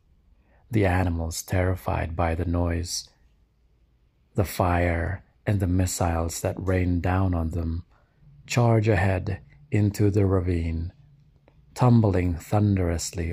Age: 30-49